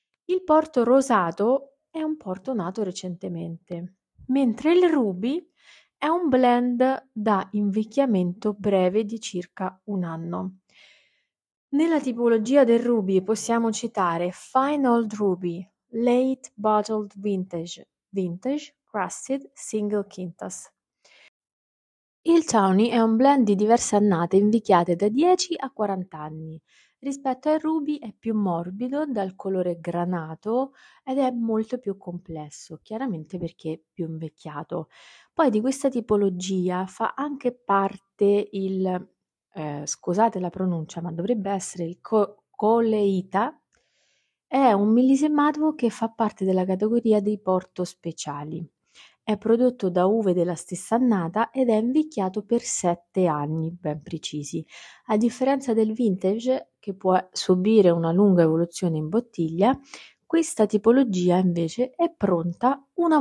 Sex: female